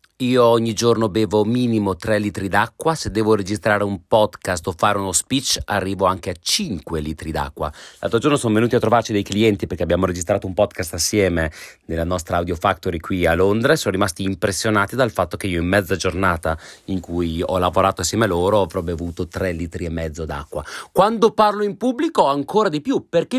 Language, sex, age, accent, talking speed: Italian, male, 30-49, native, 195 wpm